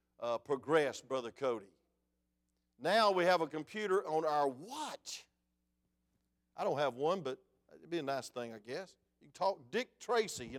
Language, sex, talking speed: English, male, 170 wpm